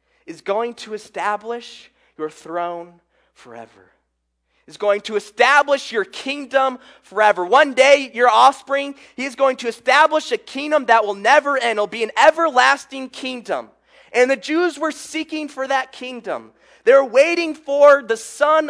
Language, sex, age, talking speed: English, male, 20-39, 150 wpm